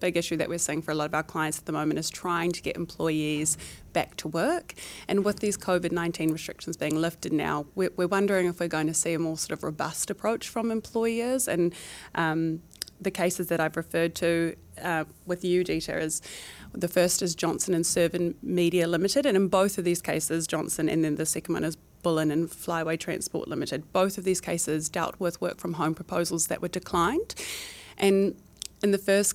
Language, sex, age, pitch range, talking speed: English, female, 20-39, 165-185 Hz, 205 wpm